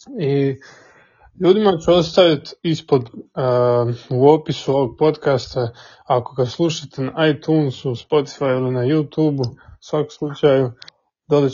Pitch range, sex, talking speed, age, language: 130-165 Hz, male, 115 wpm, 20-39, Croatian